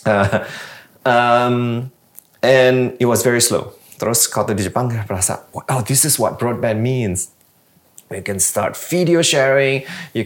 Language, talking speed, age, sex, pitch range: Indonesian, 140 wpm, 30-49, male, 100-130 Hz